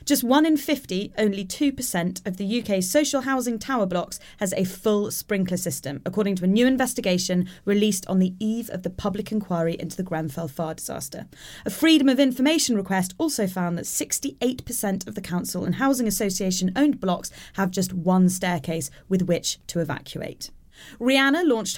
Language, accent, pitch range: English, British, 180-240 Hz